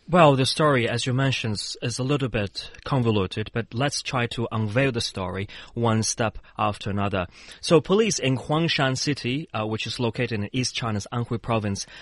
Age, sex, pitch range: 20-39, male, 100-125 Hz